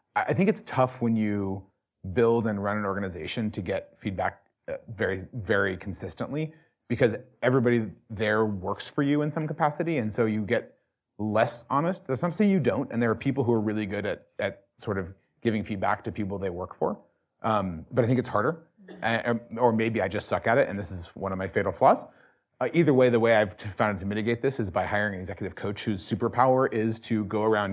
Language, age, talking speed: English, 30-49, 215 wpm